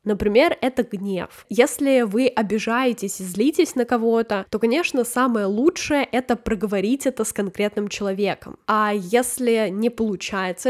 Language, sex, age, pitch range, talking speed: Russian, female, 10-29, 205-245 Hz, 140 wpm